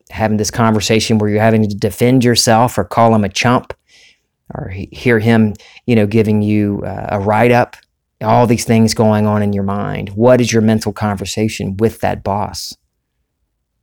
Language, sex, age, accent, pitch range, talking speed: English, male, 40-59, American, 100-115 Hz, 180 wpm